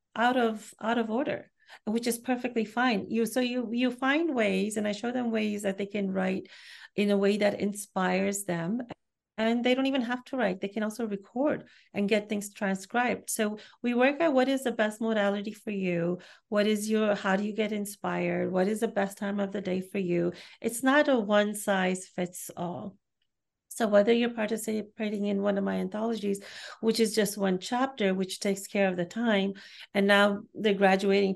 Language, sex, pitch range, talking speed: English, female, 195-235 Hz, 200 wpm